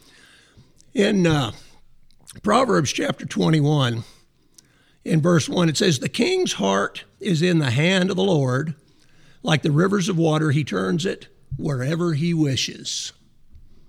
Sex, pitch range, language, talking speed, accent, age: male, 145-175 Hz, English, 135 wpm, American, 50-69